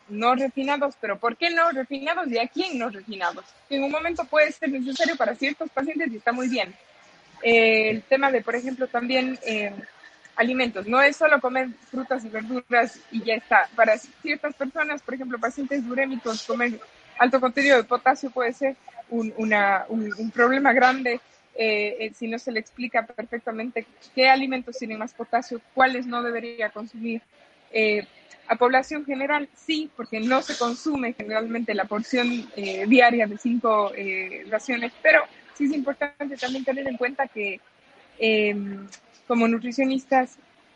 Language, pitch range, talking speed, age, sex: Spanish, 220-270 Hz, 165 wpm, 20-39, female